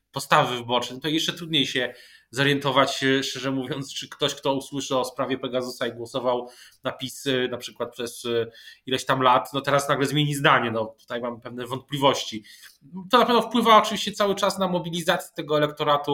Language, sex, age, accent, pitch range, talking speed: Polish, male, 20-39, native, 125-145 Hz, 180 wpm